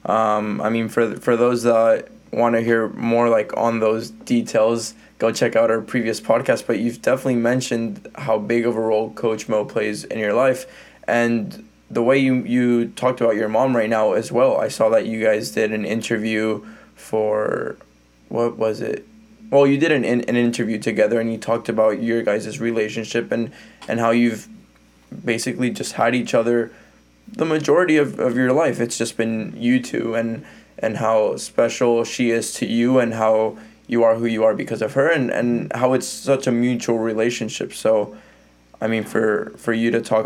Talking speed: 190 wpm